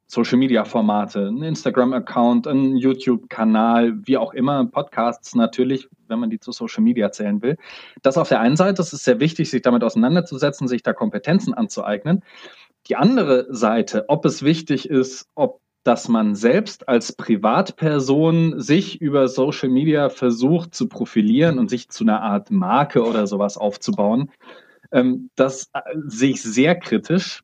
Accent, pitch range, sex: German, 130-170 Hz, male